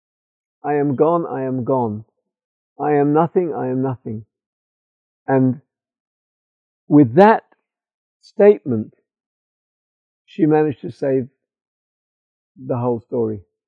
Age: 50-69